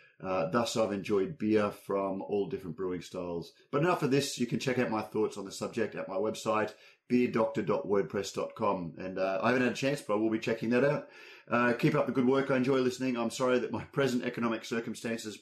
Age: 30-49